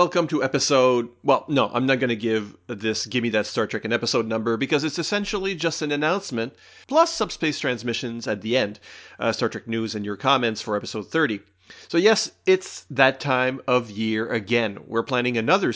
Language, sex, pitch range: English, male, 115-140 Hz